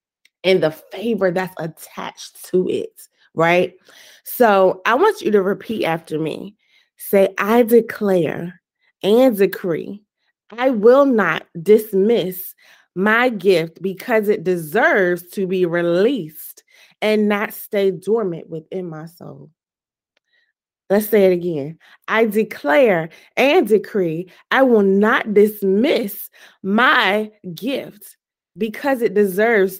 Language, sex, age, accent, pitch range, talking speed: English, female, 20-39, American, 180-220 Hz, 115 wpm